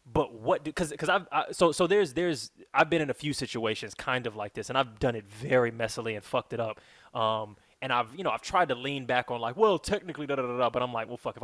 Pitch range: 120-155 Hz